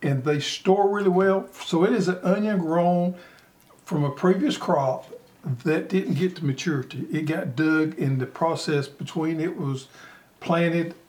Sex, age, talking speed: male, 60-79, 160 wpm